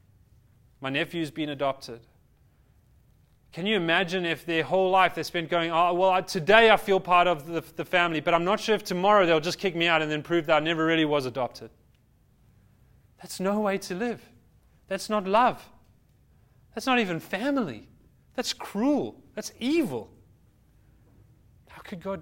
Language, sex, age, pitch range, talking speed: English, male, 30-49, 135-190 Hz, 170 wpm